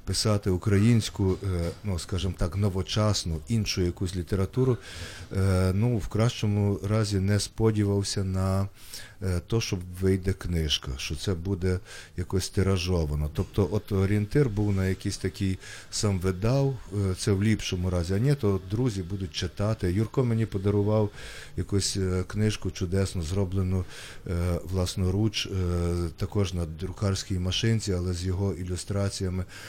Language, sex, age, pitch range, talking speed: Ukrainian, male, 40-59, 95-110 Hz, 120 wpm